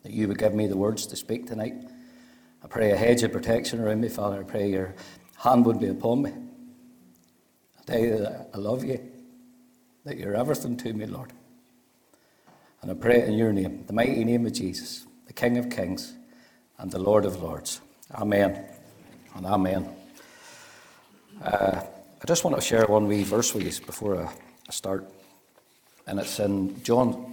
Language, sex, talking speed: English, male, 180 wpm